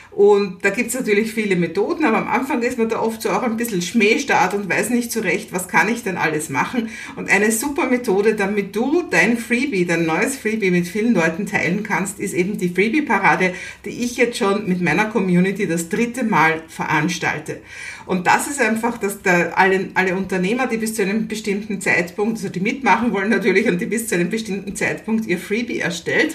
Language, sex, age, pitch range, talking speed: German, female, 50-69, 185-235 Hz, 205 wpm